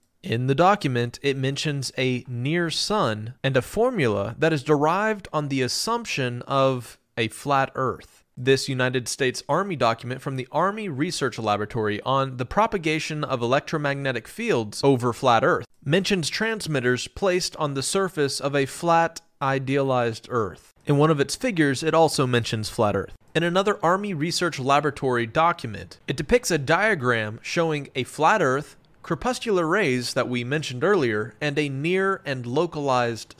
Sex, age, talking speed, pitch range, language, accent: male, 30-49, 155 wpm, 130-170 Hz, English, American